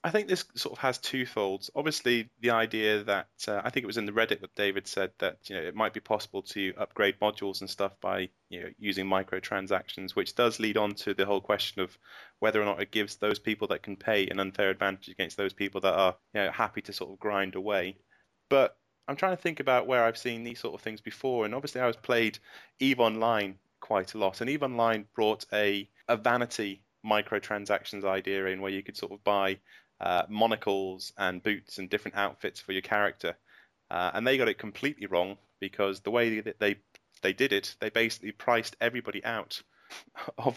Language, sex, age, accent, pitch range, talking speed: English, male, 20-39, British, 100-115 Hz, 215 wpm